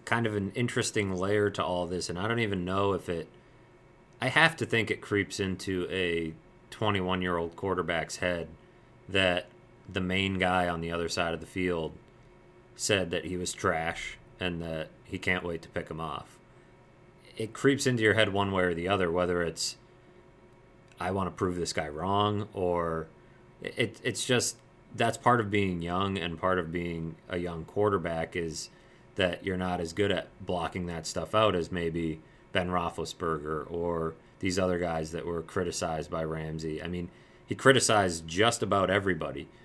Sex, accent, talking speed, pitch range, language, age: male, American, 175 wpm, 85-100 Hz, English, 30-49